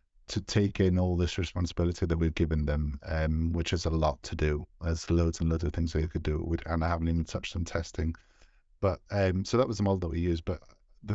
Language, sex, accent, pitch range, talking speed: English, male, British, 80-90 Hz, 250 wpm